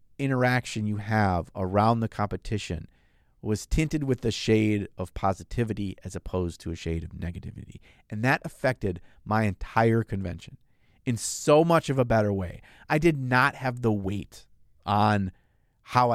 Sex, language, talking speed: male, English, 150 wpm